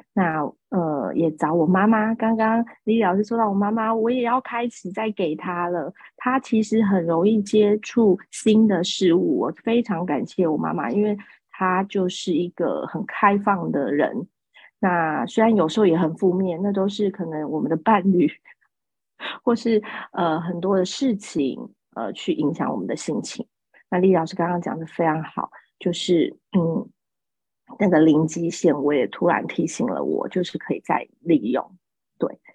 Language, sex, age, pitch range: Chinese, female, 30-49, 180-220 Hz